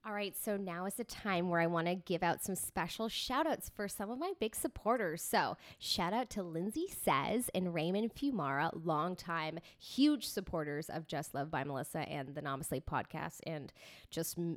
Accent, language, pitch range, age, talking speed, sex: American, English, 170-205 Hz, 20-39, 190 wpm, female